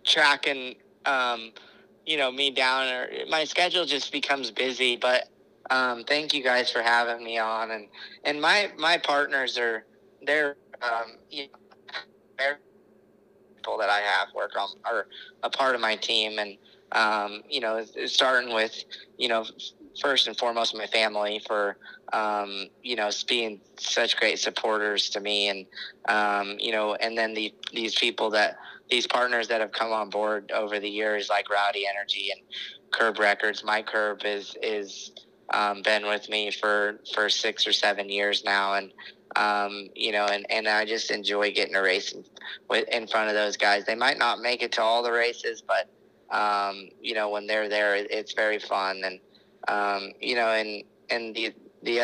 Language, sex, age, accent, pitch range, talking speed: English, male, 20-39, American, 105-120 Hz, 175 wpm